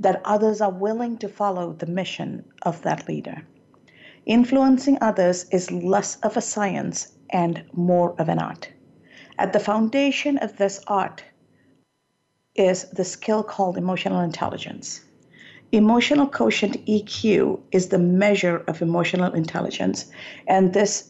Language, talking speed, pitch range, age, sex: English, 130 wpm, 180-215 Hz, 50-69, female